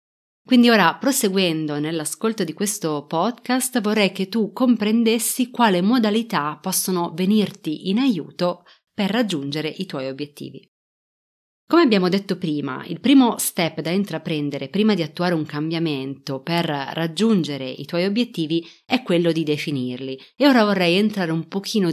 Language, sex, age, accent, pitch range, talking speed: Italian, female, 30-49, native, 160-215 Hz, 140 wpm